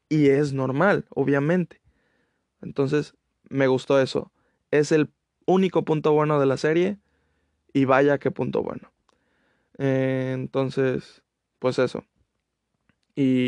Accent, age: Mexican, 20-39